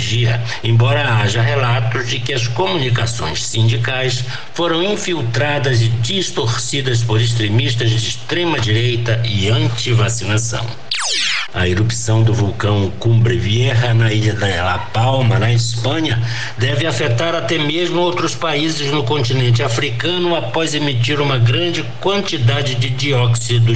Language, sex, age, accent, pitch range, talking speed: Portuguese, male, 60-79, Brazilian, 115-130 Hz, 120 wpm